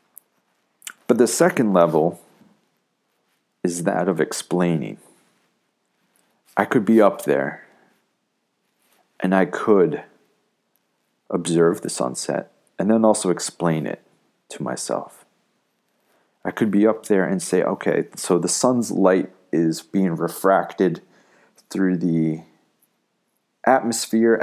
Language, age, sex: English, 40-59, male